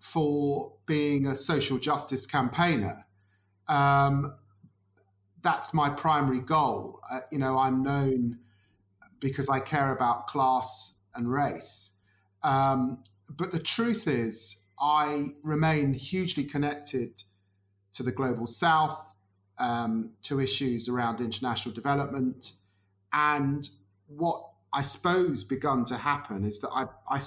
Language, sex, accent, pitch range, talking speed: English, male, British, 115-155 Hz, 115 wpm